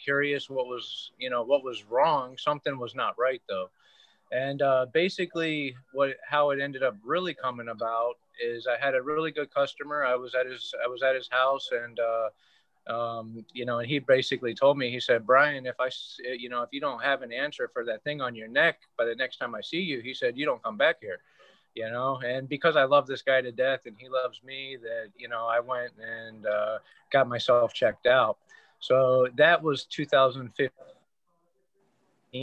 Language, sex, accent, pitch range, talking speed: English, male, American, 125-150 Hz, 205 wpm